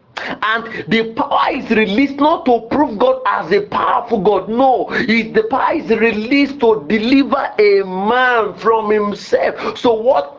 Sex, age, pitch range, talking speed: male, 50-69, 185-270 Hz, 150 wpm